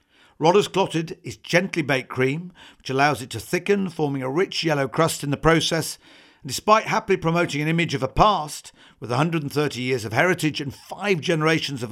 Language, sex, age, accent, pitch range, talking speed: English, male, 50-69, British, 130-175 Hz, 185 wpm